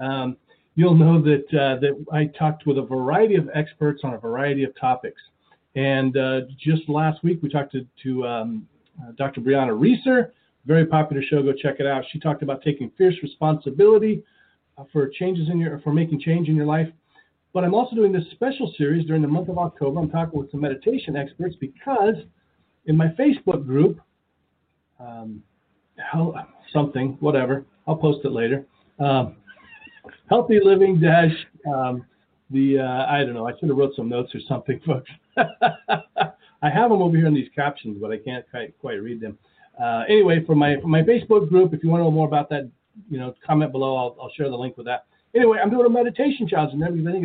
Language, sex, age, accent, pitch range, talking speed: English, male, 40-59, American, 135-165 Hz, 195 wpm